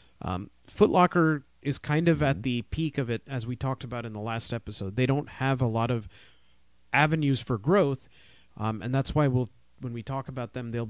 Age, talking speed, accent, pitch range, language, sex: 30-49, 210 wpm, American, 110-145 Hz, English, male